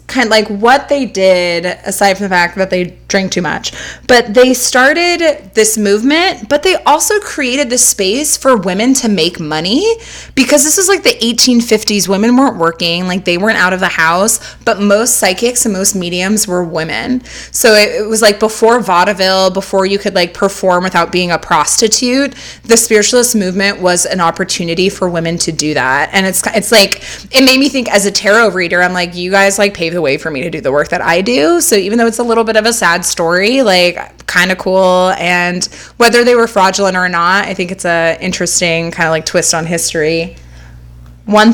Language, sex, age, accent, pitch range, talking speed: English, female, 20-39, American, 175-230 Hz, 210 wpm